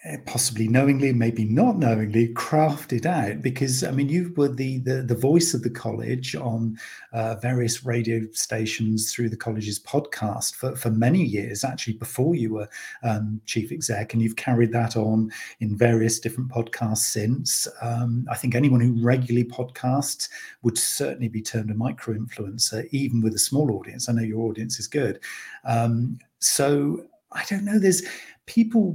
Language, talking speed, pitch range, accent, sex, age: English, 170 wpm, 115-145 Hz, British, male, 40-59